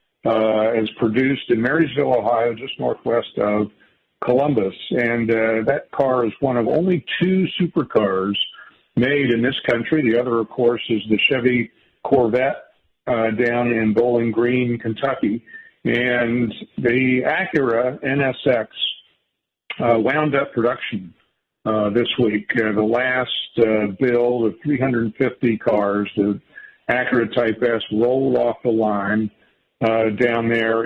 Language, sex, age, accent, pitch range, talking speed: English, male, 50-69, American, 110-125 Hz, 130 wpm